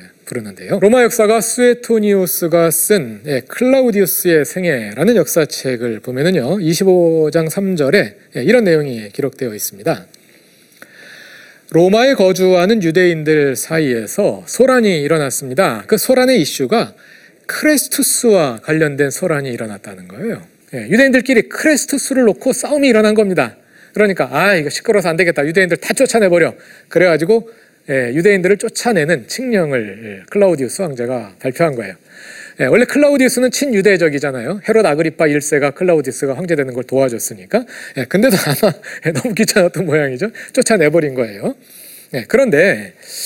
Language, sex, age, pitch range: Korean, male, 40-59, 145-230 Hz